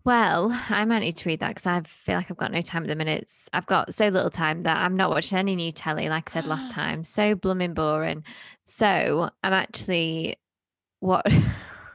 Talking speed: 210 wpm